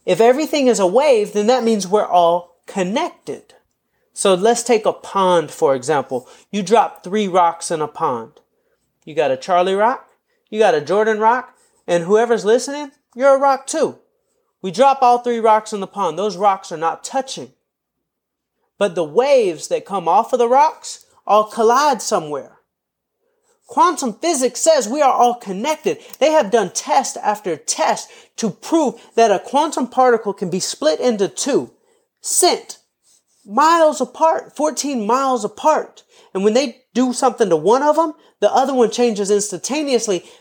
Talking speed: 165 wpm